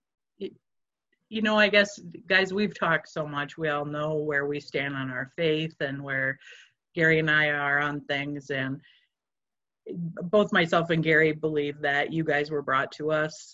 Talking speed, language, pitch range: 175 wpm, English, 145-170 Hz